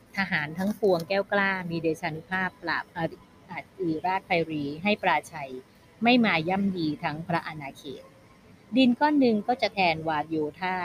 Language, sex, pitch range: Thai, female, 155-200 Hz